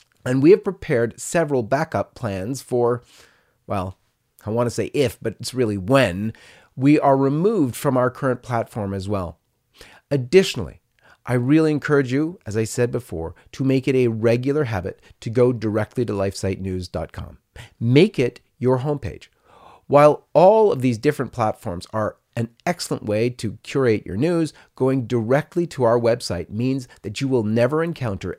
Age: 40-59